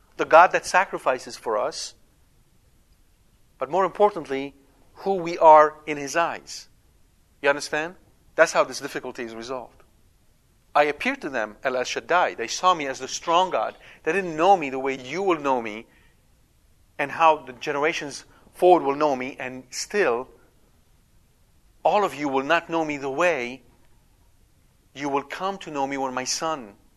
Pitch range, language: 130-165 Hz, English